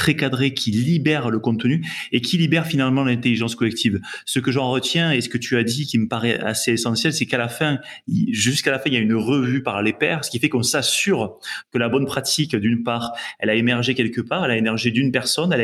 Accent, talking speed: French, 245 wpm